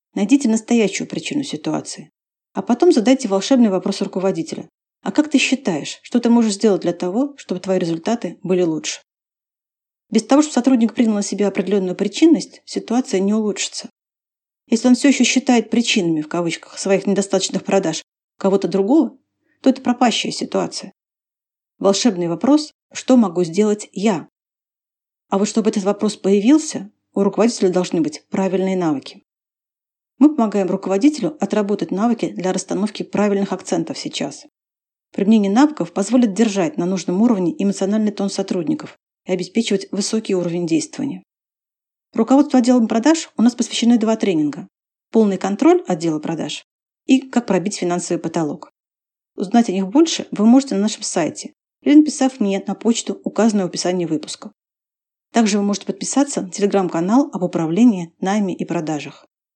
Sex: female